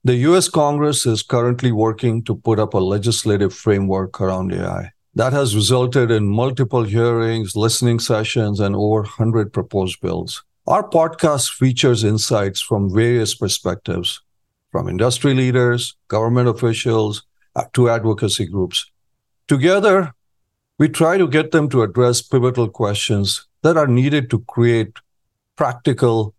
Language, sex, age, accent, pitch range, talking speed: English, male, 50-69, Indian, 105-125 Hz, 130 wpm